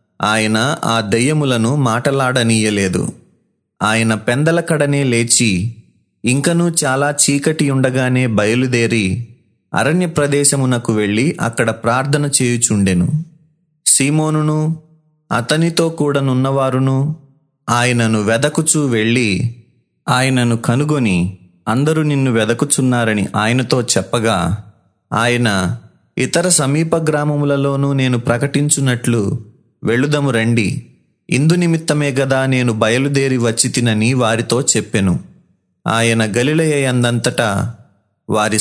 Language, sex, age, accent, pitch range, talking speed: Telugu, male, 30-49, native, 115-145 Hz, 75 wpm